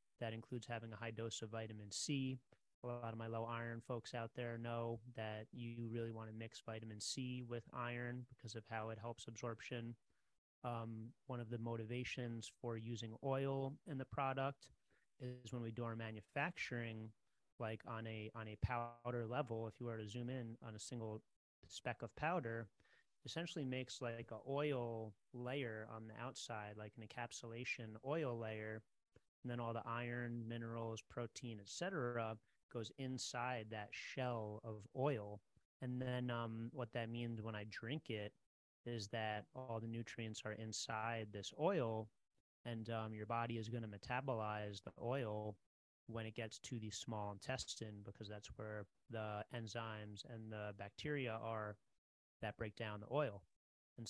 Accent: American